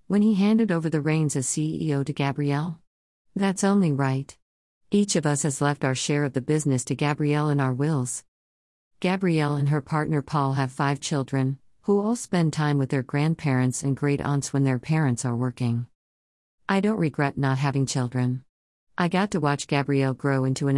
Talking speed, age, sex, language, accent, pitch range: 185 wpm, 50-69, female, English, American, 130-160 Hz